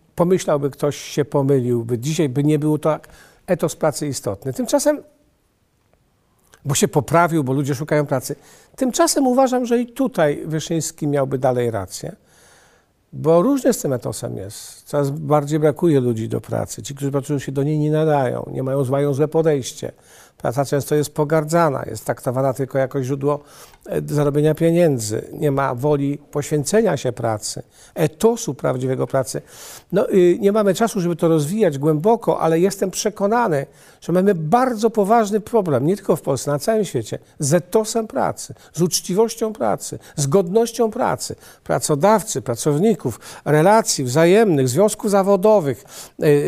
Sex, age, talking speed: male, 50-69, 145 wpm